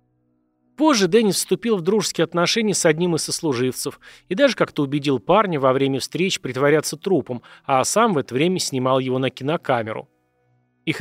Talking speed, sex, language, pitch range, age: 165 wpm, male, Russian, 125-175 Hz, 30-49